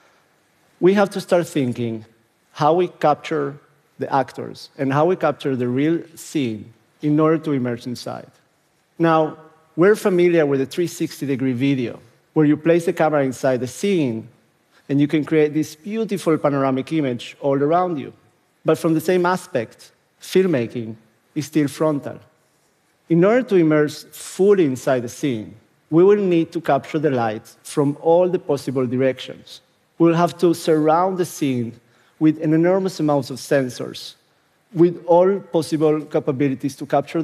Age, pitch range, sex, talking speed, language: 50-69, 135-170 Hz, male, 155 wpm, Arabic